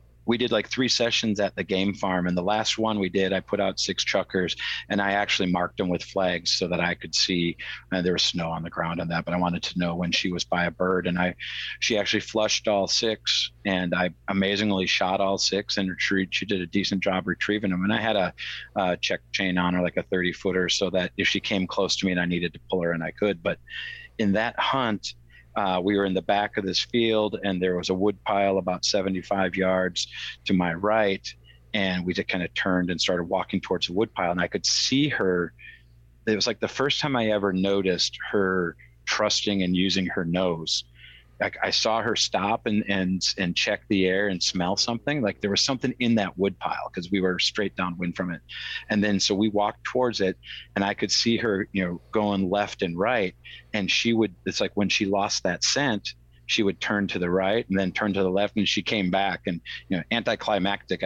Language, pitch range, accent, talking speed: English, 90-105 Hz, American, 235 wpm